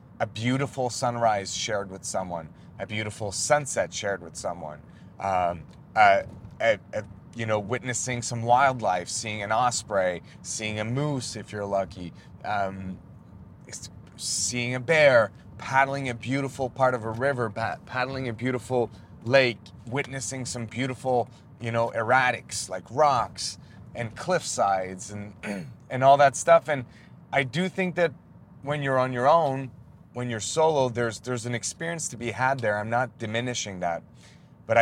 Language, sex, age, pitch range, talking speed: English, male, 30-49, 105-130 Hz, 150 wpm